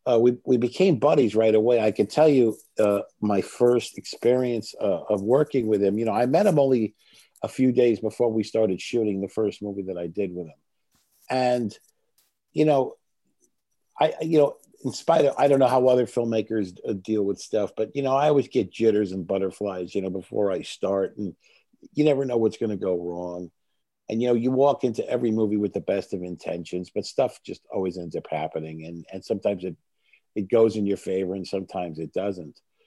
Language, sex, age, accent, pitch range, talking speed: English, male, 50-69, American, 100-130 Hz, 210 wpm